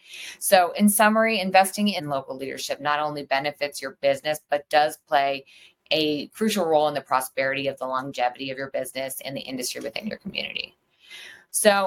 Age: 20-39